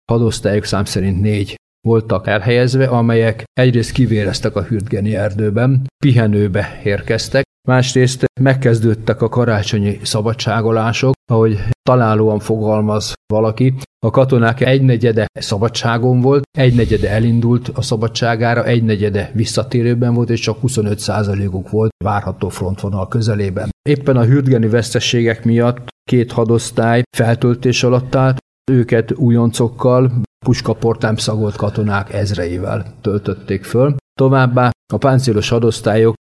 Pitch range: 105-120 Hz